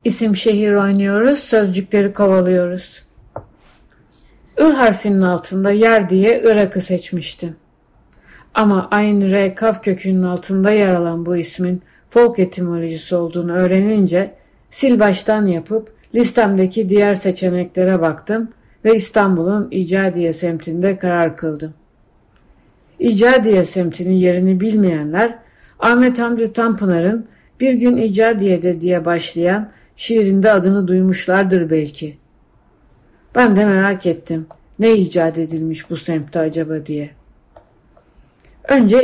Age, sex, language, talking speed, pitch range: 60-79, female, Turkish, 105 wpm, 175-210 Hz